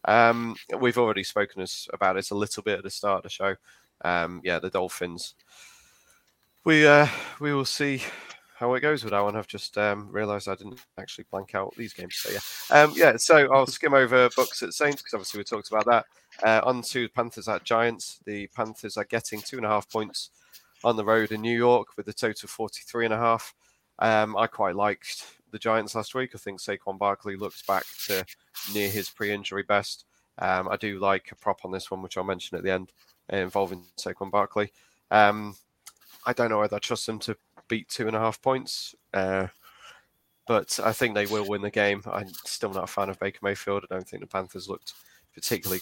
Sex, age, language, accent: male, 20-39, English, British